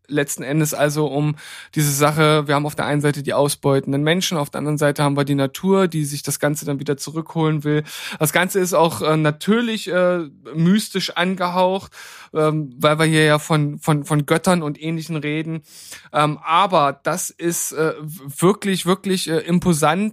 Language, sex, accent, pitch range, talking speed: German, male, German, 155-185 Hz, 180 wpm